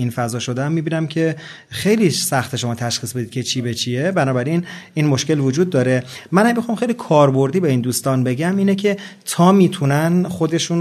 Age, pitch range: 30-49, 130-165 Hz